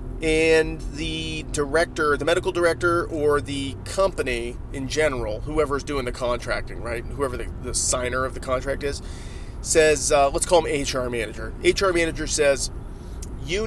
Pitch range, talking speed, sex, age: 120-160 Hz, 155 wpm, male, 30-49